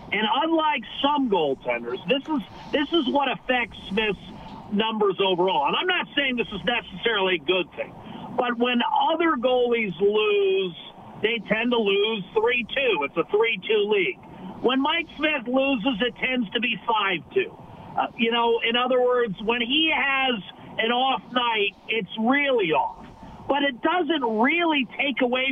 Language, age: English, 50-69